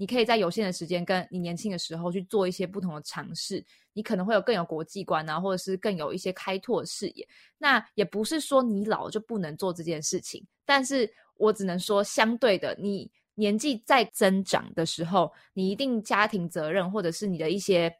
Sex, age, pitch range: female, 20-39, 180-220 Hz